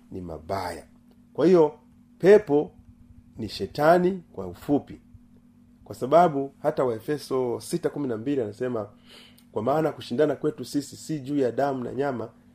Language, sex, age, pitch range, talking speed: Swahili, male, 40-59, 110-155 Hz, 125 wpm